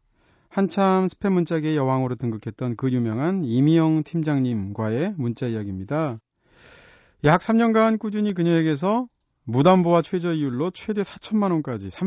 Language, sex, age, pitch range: Korean, male, 40-59, 115-160 Hz